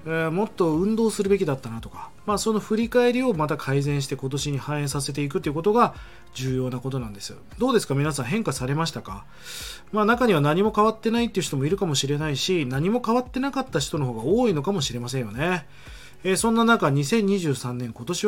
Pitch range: 130-200 Hz